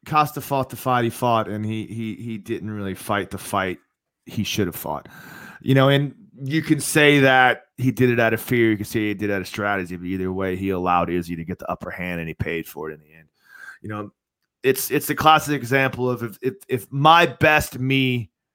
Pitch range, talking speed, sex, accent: 95-125 Hz, 240 wpm, male, American